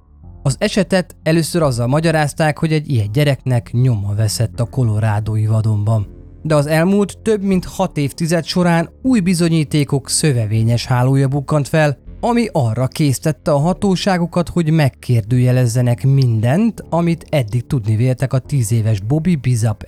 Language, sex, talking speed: Hungarian, male, 135 wpm